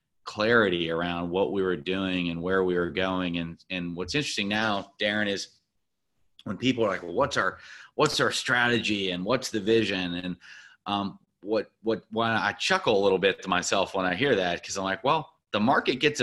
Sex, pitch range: male, 90-115 Hz